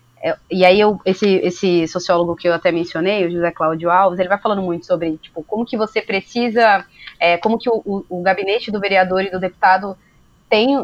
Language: Portuguese